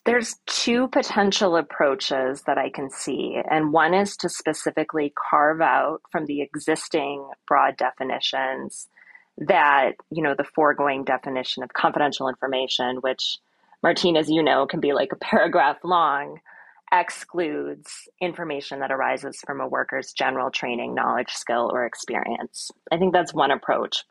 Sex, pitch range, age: female, 140-185 Hz, 30-49